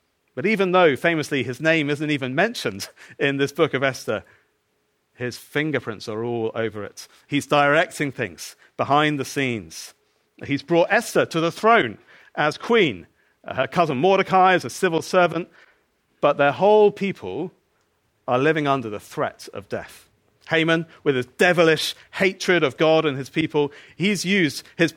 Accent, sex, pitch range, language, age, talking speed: British, male, 125-175 Hz, English, 40-59, 155 wpm